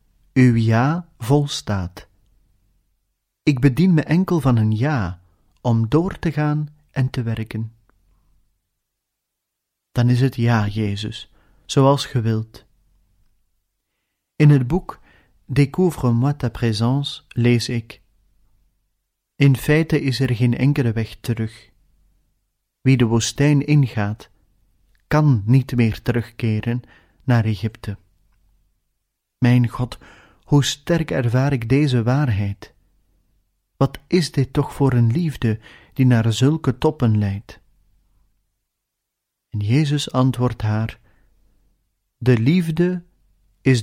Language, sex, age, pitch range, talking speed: Dutch, male, 40-59, 100-135 Hz, 105 wpm